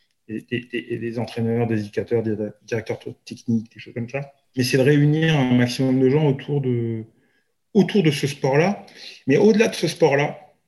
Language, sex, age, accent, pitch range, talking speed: French, male, 30-49, French, 110-135 Hz, 175 wpm